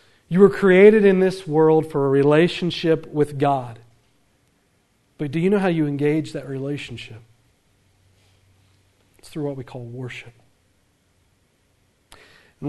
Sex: male